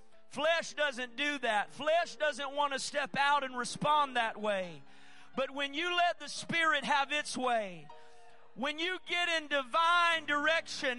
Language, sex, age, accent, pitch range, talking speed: English, male, 40-59, American, 260-315 Hz, 160 wpm